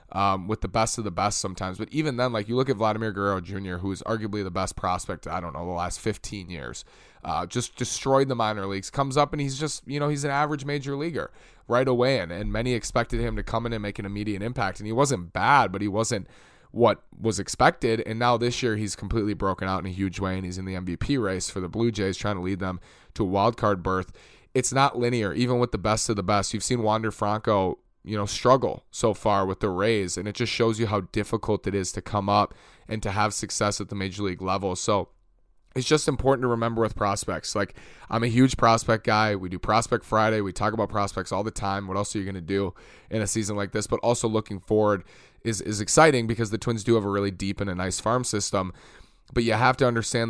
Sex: male